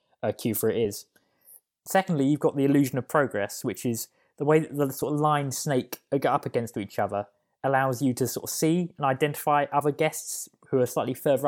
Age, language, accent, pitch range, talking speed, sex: 20-39, English, British, 120-150 Hz, 215 wpm, male